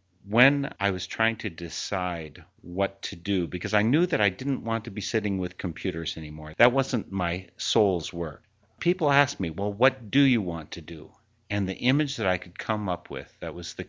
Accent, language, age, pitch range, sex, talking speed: American, English, 50-69, 85-110 Hz, male, 210 wpm